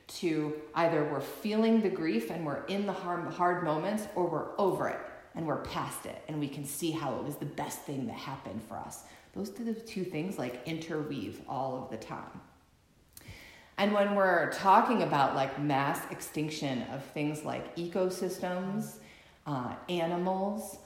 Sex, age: female, 30-49